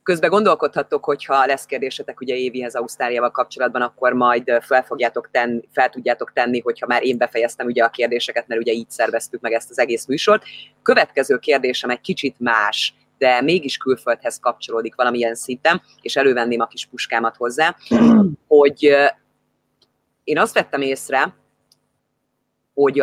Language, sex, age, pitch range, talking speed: Hungarian, female, 30-49, 120-140 Hz, 145 wpm